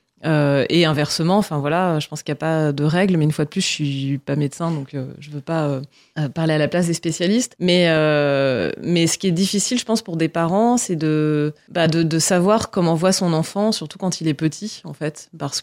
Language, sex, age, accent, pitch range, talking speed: French, female, 30-49, French, 145-175 Hz, 255 wpm